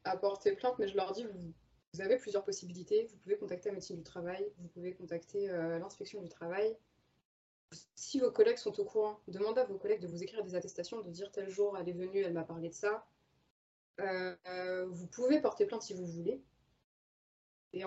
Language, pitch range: French, 180-215 Hz